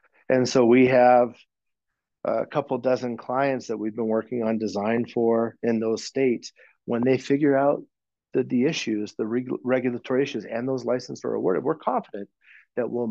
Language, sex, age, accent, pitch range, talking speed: English, male, 40-59, American, 115-135 Hz, 175 wpm